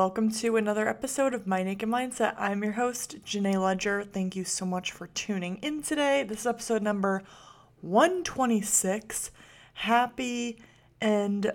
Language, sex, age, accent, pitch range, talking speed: English, female, 30-49, American, 185-225 Hz, 145 wpm